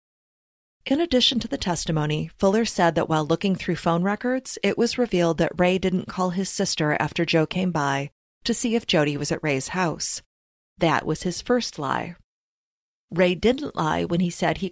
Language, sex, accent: English, female, American